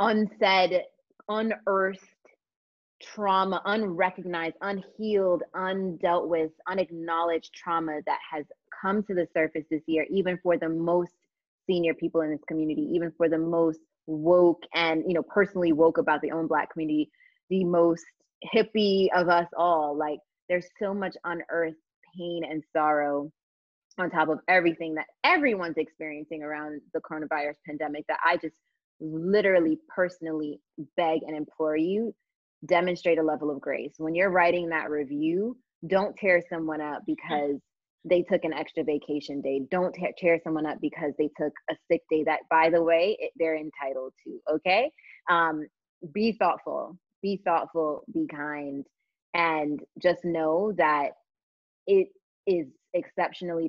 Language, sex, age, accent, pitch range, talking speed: English, female, 20-39, American, 155-185 Hz, 145 wpm